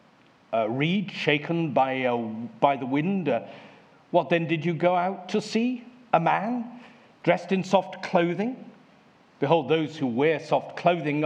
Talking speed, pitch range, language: 160 wpm, 150-220 Hz, English